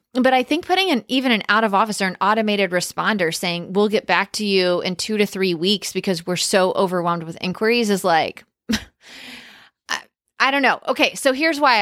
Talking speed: 210 wpm